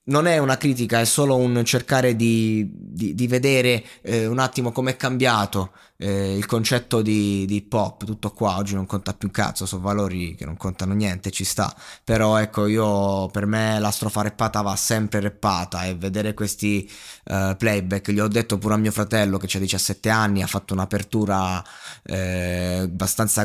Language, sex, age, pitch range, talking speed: Italian, male, 20-39, 100-115 Hz, 180 wpm